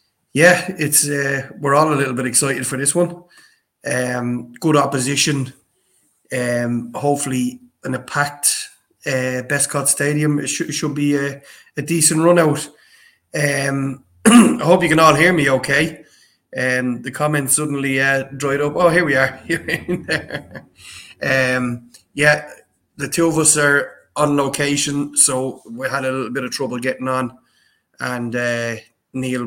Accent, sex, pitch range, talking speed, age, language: Irish, male, 130-160 Hz, 155 wpm, 20-39, English